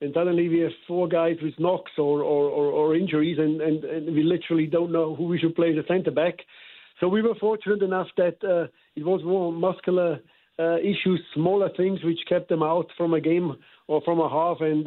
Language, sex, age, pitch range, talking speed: English, male, 50-69, 150-175 Hz, 215 wpm